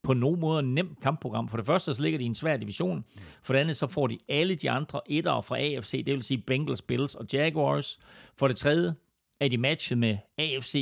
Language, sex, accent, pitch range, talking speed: Danish, male, native, 115-145 Hz, 235 wpm